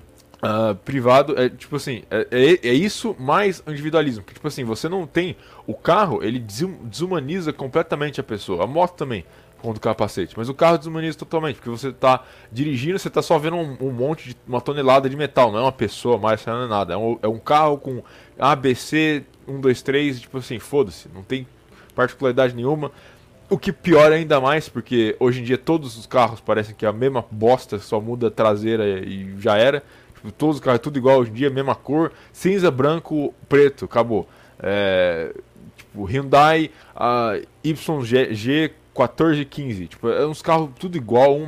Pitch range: 120-155 Hz